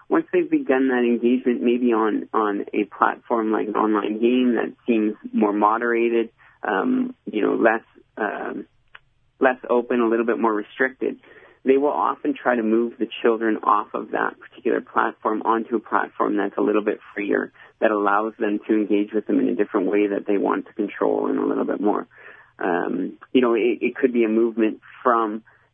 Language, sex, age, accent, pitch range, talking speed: English, male, 30-49, American, 105-125 Hz, 190 wpm